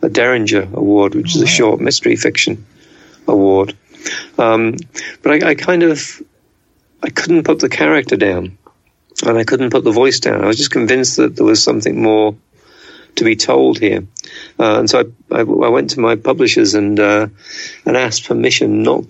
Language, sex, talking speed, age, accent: English, male, 180 wpm, 50-69, British